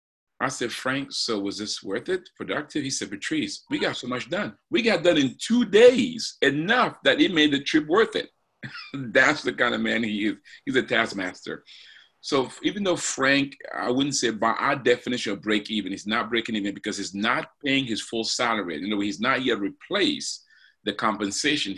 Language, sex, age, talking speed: English, male, 40-59, 200 wpm